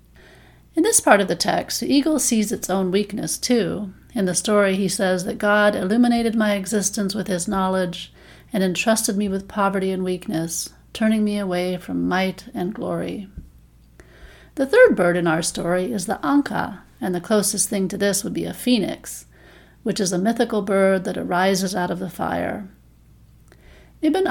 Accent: American